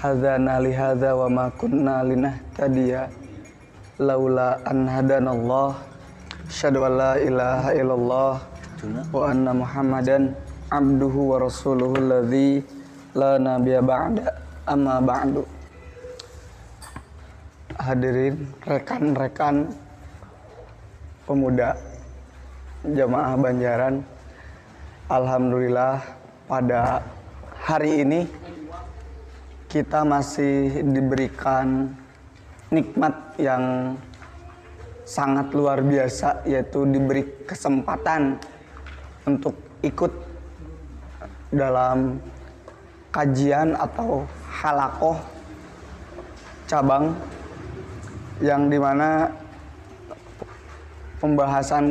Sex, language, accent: male, Indonesian, native